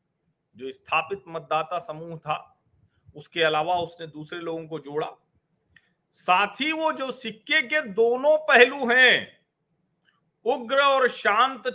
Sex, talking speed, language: male, 125 wpm, Hindi